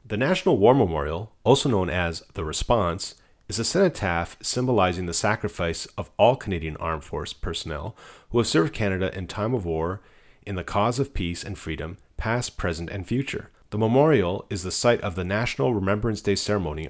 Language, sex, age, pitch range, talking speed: English, male, 40-59, 85-110 Hz, 180 wpm